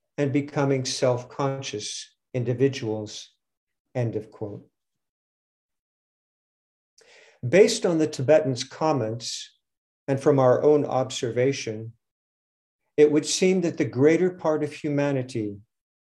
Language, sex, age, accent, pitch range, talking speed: English, male, 50-69, American, 115-155 Hz, 95 wpm